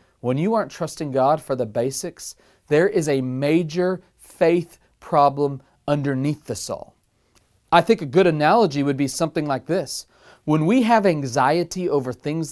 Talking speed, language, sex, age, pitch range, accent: 160 wpm, English, male, 40-59, 140-190 Hz, American